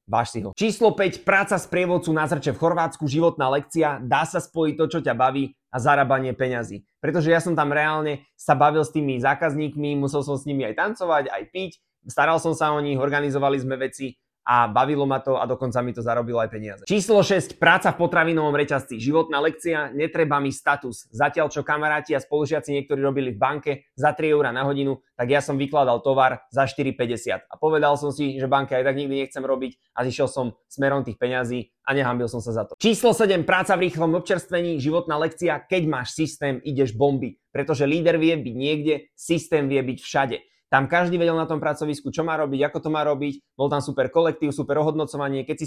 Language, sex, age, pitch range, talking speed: Slovak, male, 20-39, 135-160 Hz, 205 wpm